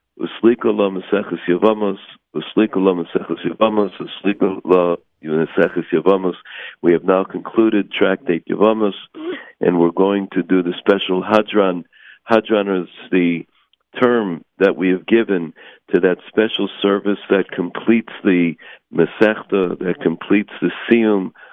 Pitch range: 95-105 Hz